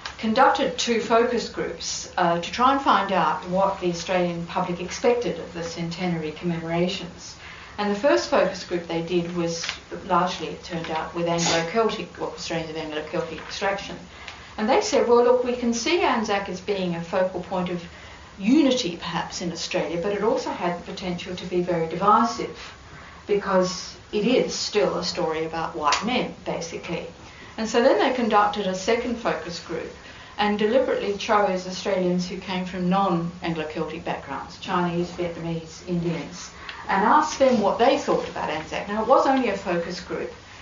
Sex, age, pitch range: female, 60-79, 170-210 Hz